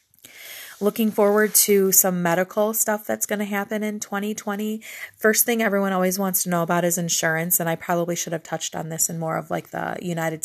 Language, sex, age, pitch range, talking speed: English, female, 30-49, 175-200 Hz, 205 wpm